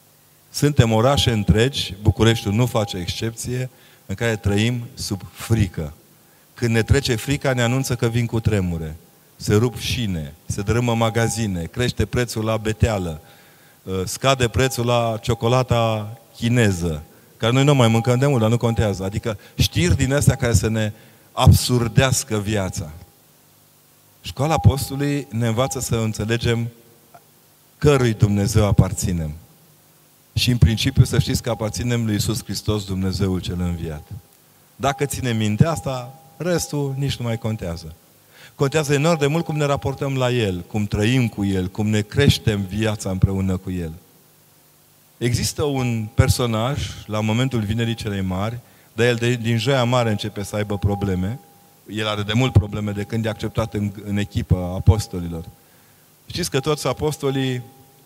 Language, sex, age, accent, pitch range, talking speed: Romanian, male, 30-49, native, 105-125 Hz, 145 wpm